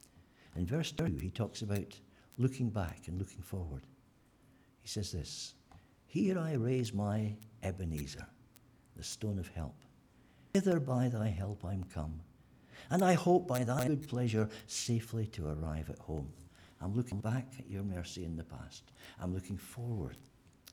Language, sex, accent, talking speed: English, male, British, 155 wpm